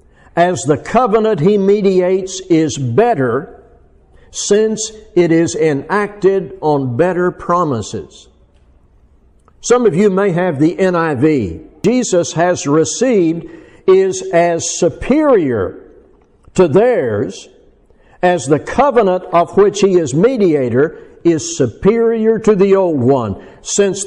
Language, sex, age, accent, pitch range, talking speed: English, male, 60-79, American, 160-205 Hz, 110 wpm